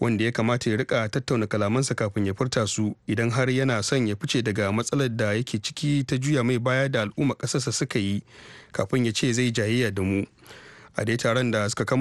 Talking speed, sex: 155 wpm, male